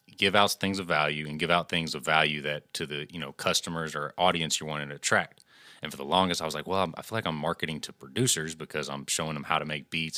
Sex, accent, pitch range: male, American, 75-90 Hz